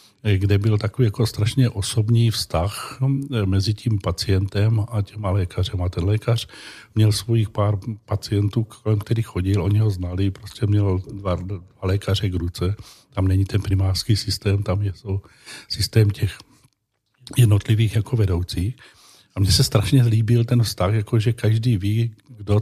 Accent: native